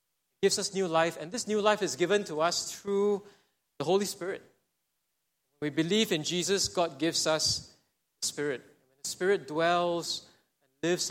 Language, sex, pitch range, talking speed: English, male, 150-195 Hz, 160 wpm